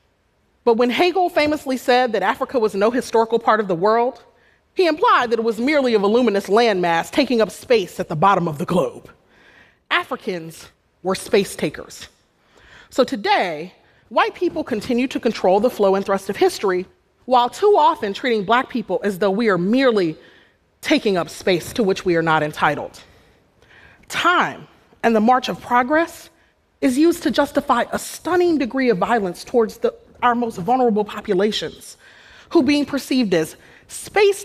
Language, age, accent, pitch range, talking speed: Russian, 30-49, American, 200-260 Hz, 165 wpm